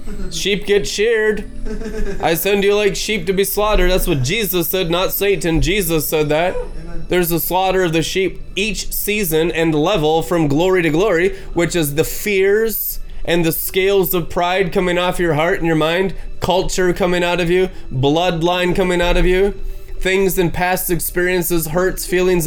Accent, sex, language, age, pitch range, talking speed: American, male, English, 20-39, 160-190 Hz, 175 wpm